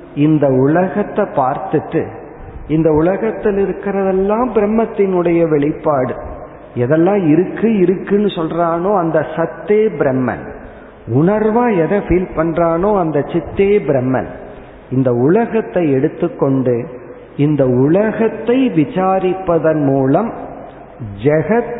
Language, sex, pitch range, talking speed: Tamil, male, 130-180 Hz, 85 wpm